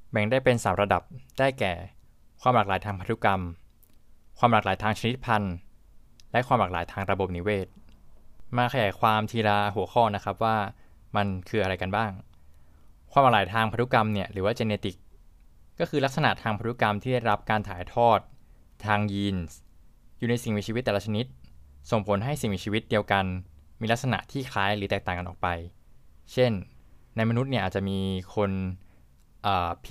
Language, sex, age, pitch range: Thai, male, 20-39, 95-115 Hz